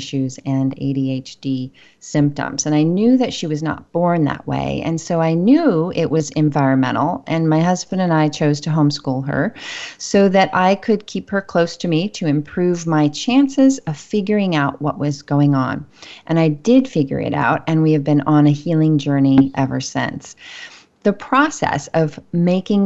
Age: 30-49